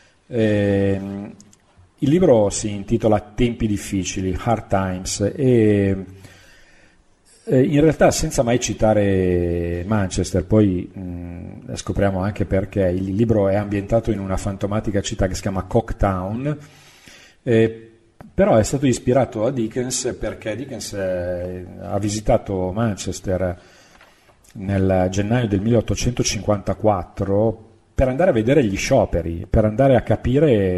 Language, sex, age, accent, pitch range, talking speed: Italian, male, 40-59, native, 95-115 Hz, 115 wpm